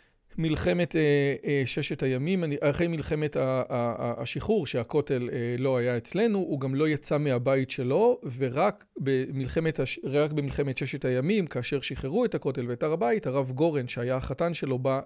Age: 40-59